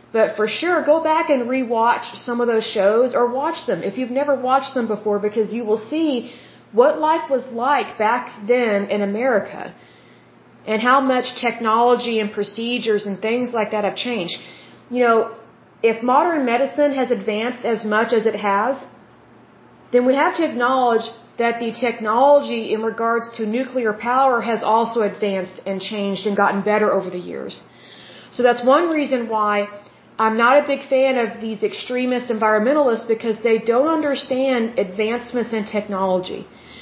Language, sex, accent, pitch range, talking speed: Russian, female, American, 215-260 Hz, 165 wpm